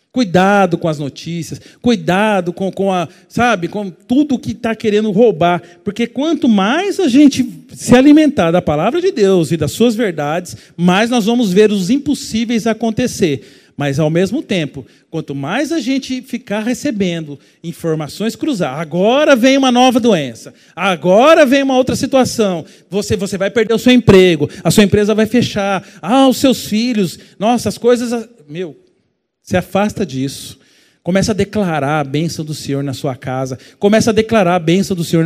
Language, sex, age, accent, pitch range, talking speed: Portuguese, male, 40-59, Brazilian, 170-245 Hz, 170 wpm